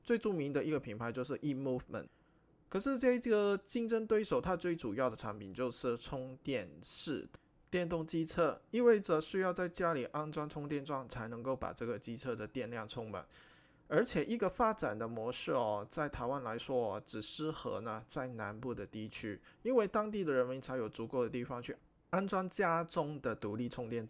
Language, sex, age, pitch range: Chinese, male, 20-39, 115-165 Hz